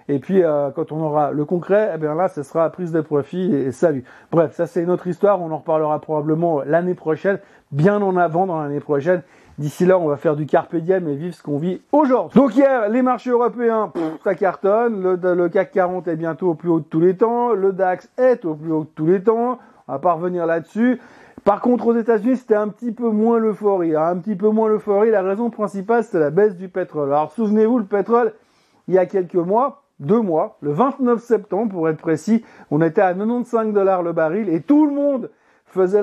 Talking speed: 230 wpm